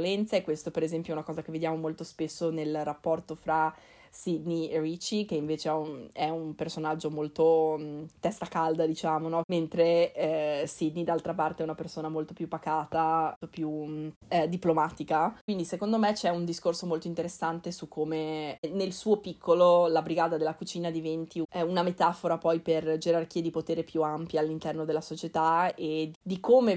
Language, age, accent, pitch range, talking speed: Italian, 20-39, native, 160-175 Hz, 175 wpm